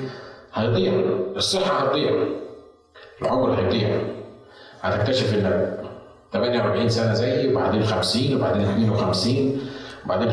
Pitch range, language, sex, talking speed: 105-130 Hz, Arabic, male, 85 wpm